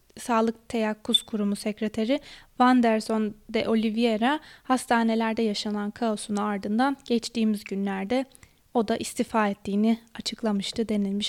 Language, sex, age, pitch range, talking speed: Turkish, female, 20-39, 215-255 Hz, 100 wpm